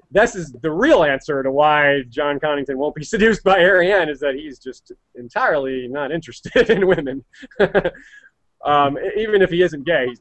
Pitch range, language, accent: 135-195 Hz, English, American